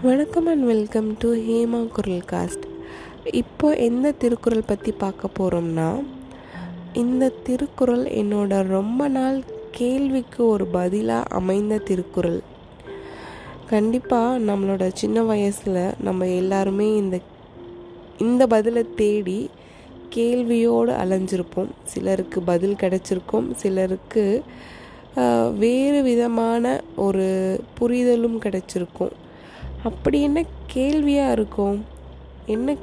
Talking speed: 90 wpm